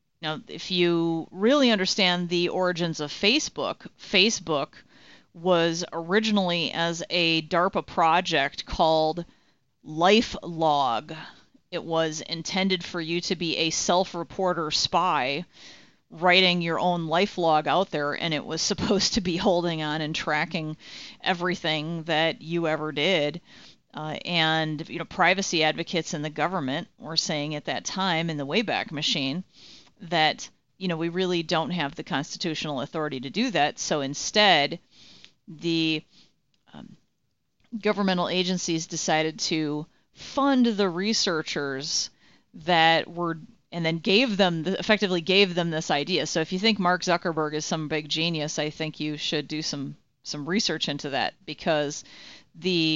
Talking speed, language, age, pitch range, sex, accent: 145 wpm, English, 30-49, 155-180 Hz, female, American